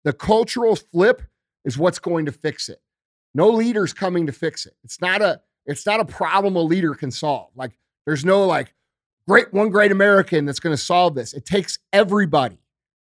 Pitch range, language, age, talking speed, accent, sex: 150-205 Hz, English, 40-59, 190 wpm, American, male